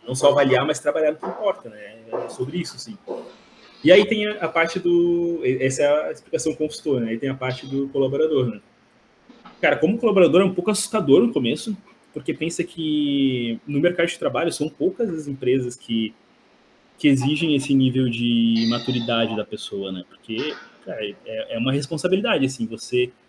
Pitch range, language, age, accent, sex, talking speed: 125-170 Hz, Portuguese, 20-39, Brazilian, male, 180 wpm